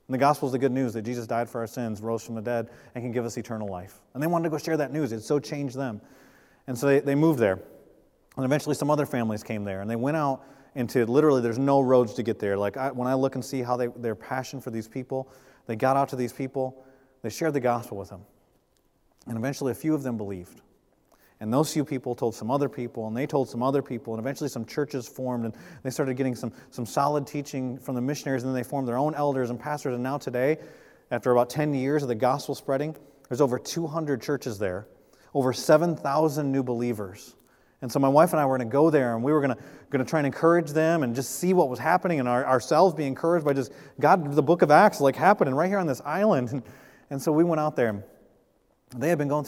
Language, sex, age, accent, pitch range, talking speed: English, male, 30-49, American, 120-145 Hz, 250 wpm